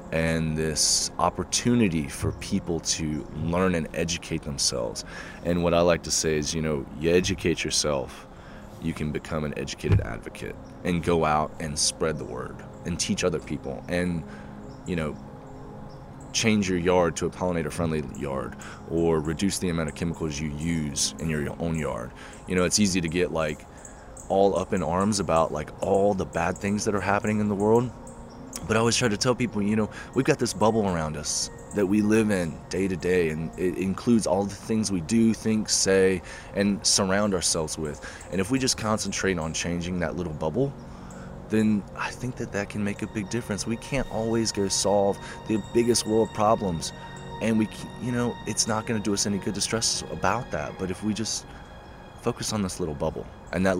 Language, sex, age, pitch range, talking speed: English, male, 20-39, 80-105 Hz, 195 wpm